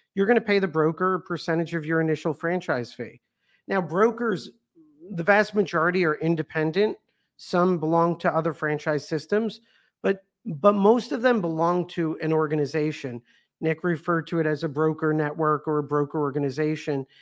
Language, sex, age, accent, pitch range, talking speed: English, male, 50-69, American, 155-200 Hz, 165 wpm